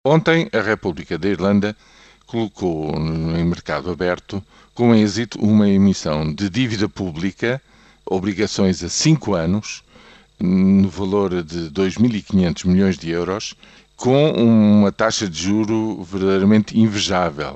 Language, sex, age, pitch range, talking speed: Portuguese, male, 50-69, 90-110 Hz, 115 wpm